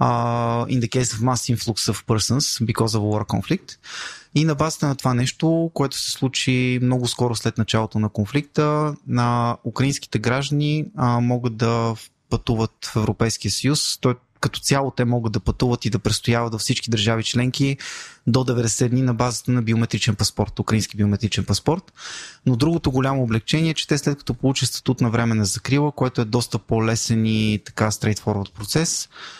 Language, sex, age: Bulgarian, male, 20-39